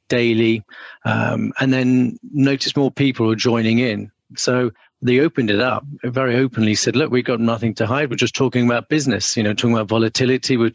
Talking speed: 195 wpm